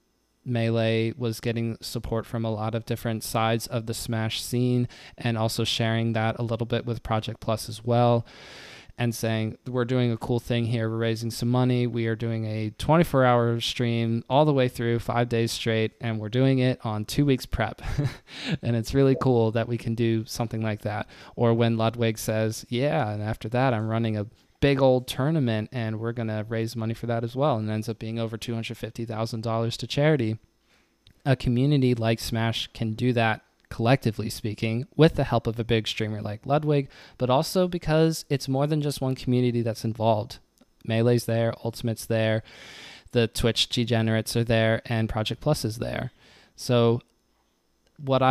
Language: English